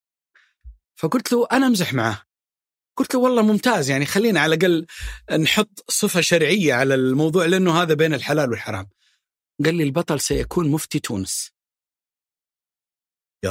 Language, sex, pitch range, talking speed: Arabic, male, 120-190 Hz, 135 wpm